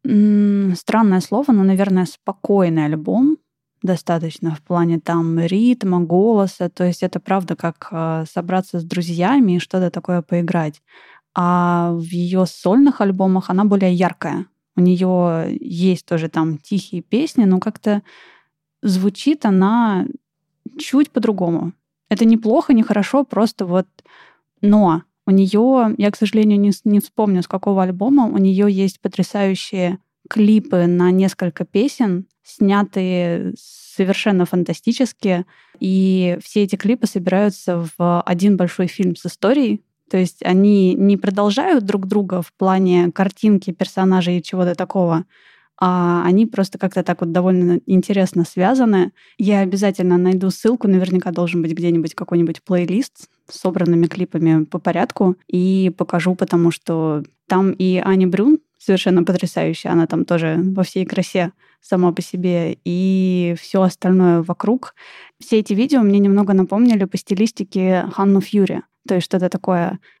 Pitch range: 175-205 Hz